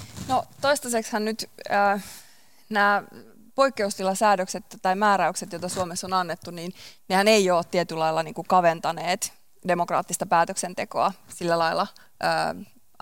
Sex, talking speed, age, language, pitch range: female, 110 wpm, 20-39, Finnish, 170-210 Hz